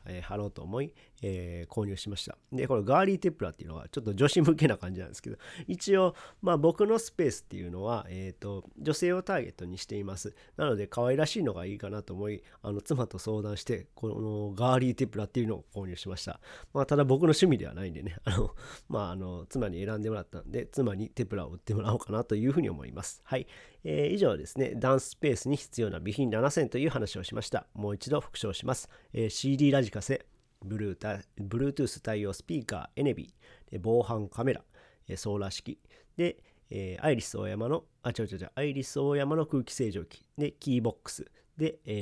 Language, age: Japanese, 40-59